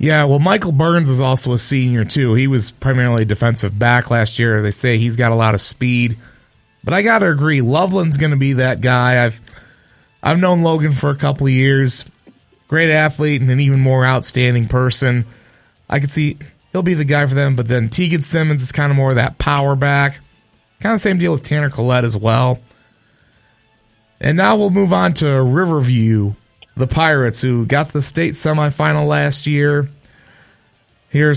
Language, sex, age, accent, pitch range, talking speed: English, male, 30-49, American, 125-155 Hz, 185 wpm